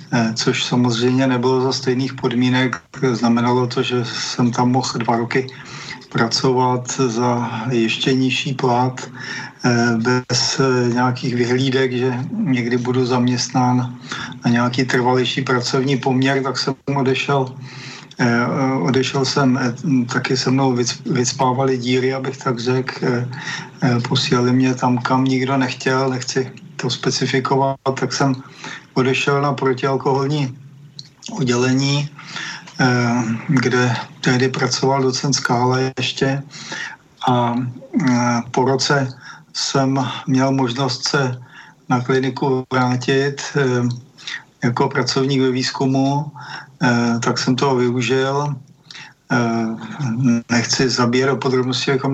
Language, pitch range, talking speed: Czech, 125-135 Hz, 100 wpm